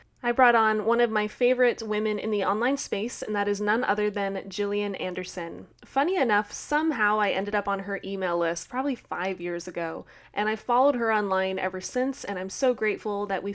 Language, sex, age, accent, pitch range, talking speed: English, female, 20-39, American, 195-235 Hz, 210 wpm